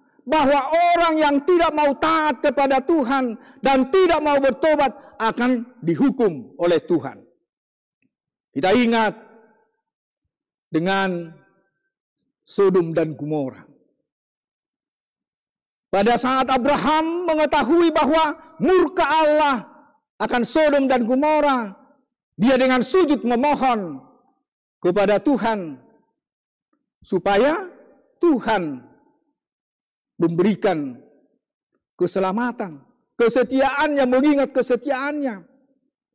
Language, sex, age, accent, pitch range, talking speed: Indonesian, male, 50-69, native, 230-305 Hz, 75 wpm